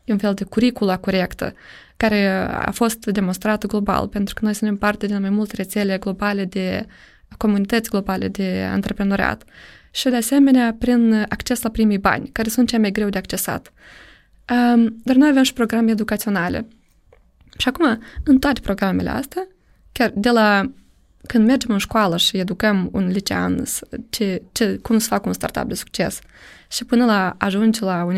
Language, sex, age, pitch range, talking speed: Romanian, female, 20-39, 195-230 Hz, 170 wpm